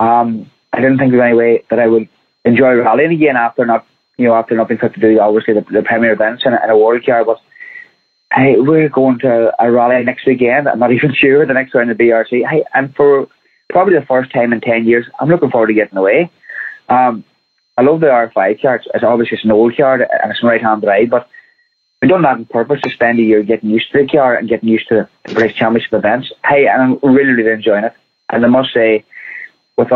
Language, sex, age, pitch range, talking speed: English, male, 20-39, 115-145 Hz, 245 wpm